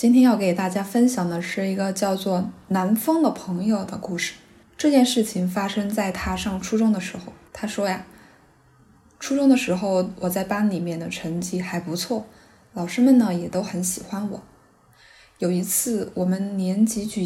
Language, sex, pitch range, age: Chinese, female, 180-220 Hz, 10-29